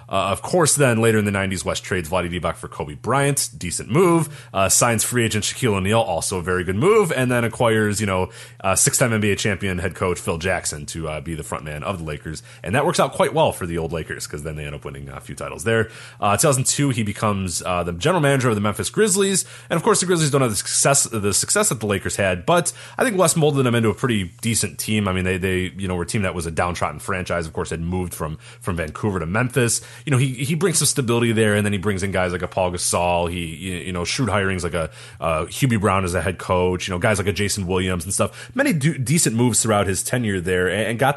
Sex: male